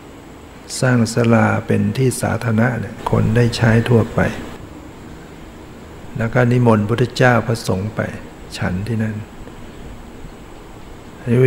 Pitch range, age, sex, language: 100-115 Hz, 60-79, male, Thai